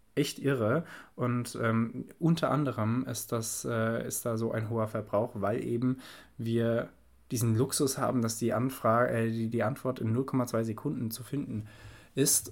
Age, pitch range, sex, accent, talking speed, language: 20-39, 105-125 Hz, male, German, 165 wpm, German